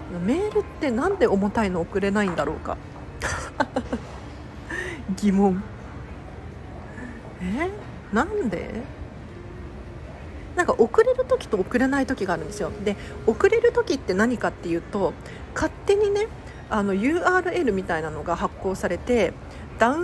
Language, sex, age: Japanese, female, 40-59